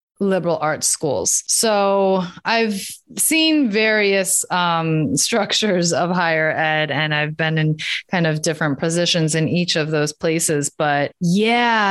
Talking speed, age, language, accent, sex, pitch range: 135 wpm, 20-39, English, American, female, 160-215 Hz